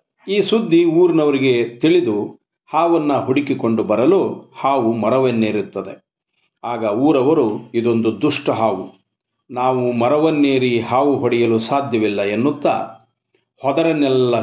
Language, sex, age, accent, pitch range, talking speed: Kannada, male, 50-69, native, 115-140 Hz, 85 wpm